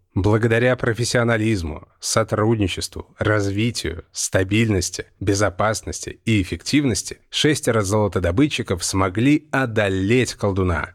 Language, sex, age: Russian, male, 30-49